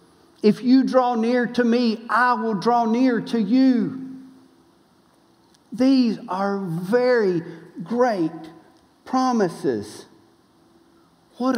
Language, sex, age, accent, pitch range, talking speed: English, male, 50-69, American, 165-245 Hz, 95 wpm